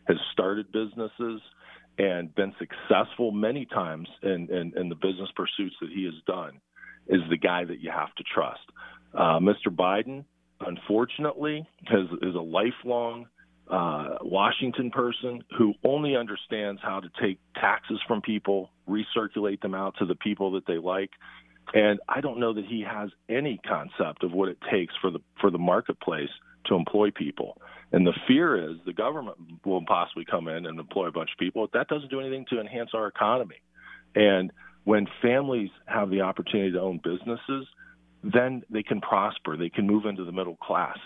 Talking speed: 170 wpm